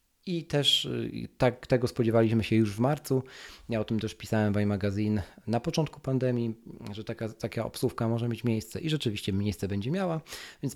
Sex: male